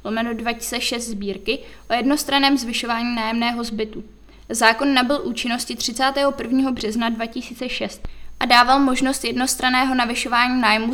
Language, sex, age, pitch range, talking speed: Czech, female, 20-39, 230-260 Hz, 110 wpm